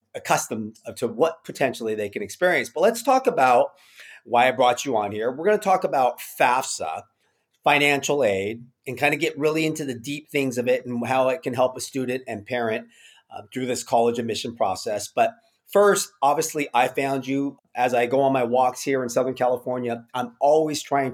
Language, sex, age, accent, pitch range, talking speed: English, male, 30-49, American, 125-155 Hz, 200 wpm